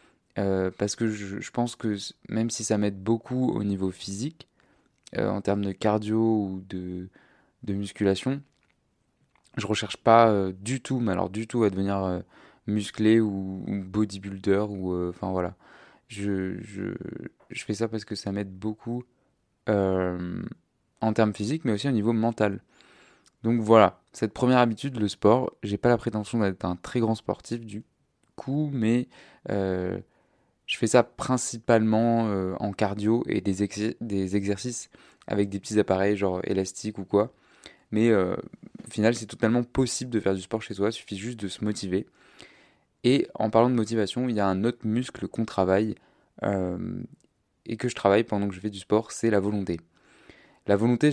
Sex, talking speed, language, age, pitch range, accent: male, 175 wpm, French, 20-39, 100-115 Hz, French